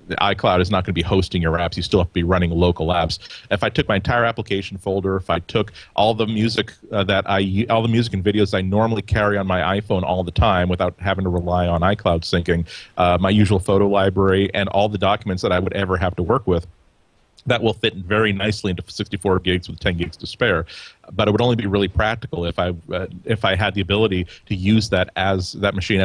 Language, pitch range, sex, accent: English, 95-110 Hz, male, American